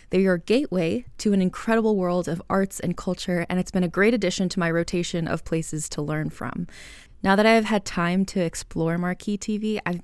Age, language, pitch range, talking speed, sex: 20-39, English, 170-195 Hz, 210 wpm, female